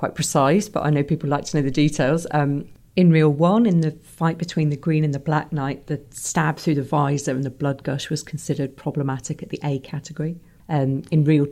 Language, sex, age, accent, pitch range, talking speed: English, female, 40-59, British, 140-155 Hz, 230 wpm